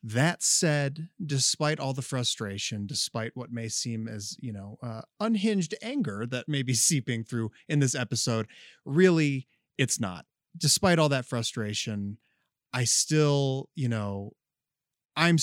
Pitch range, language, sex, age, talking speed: 115-145 Hz, English, male, 30-49, 140 wpm